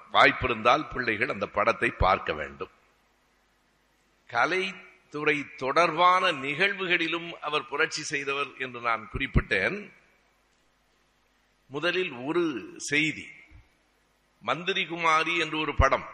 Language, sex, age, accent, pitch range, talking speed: Tamil, male, 60-79, native, 145-175 Hz, 80 wpm